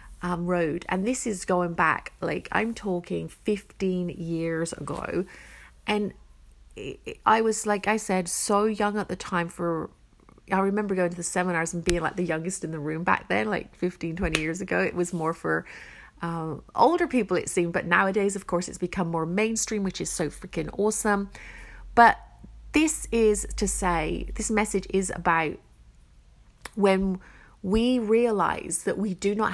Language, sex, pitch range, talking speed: English, female, 175-205 Hz, 175 wpm